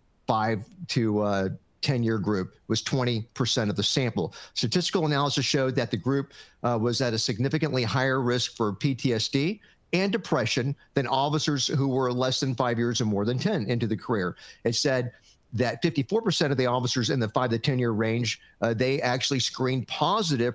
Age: 50-69